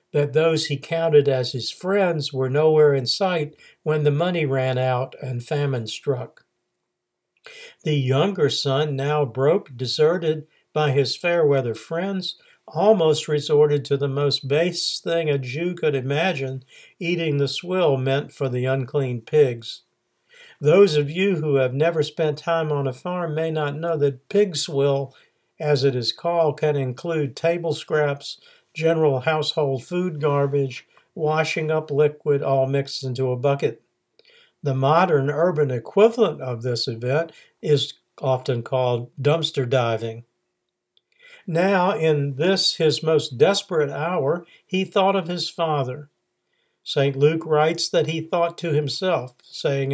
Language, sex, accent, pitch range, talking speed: English, male, American, 135-165 Hz, 140 wpm